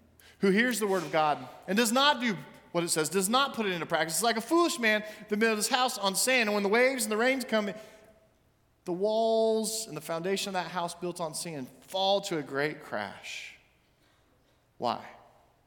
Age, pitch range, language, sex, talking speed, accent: 40-59, 135-210 Hz, English, male, 210 wpm, American